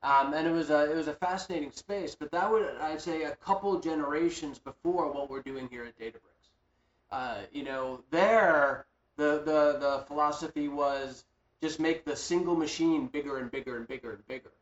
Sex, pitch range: male, 130-160 Hz